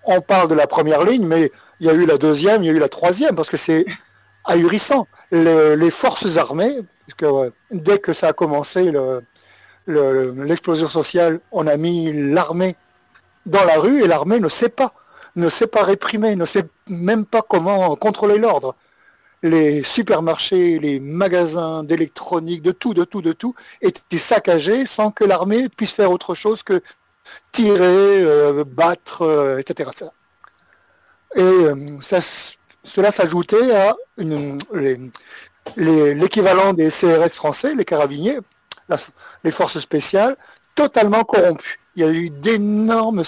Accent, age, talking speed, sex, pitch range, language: French, 60-79, 145 wpm, male, 155-210 Hz, French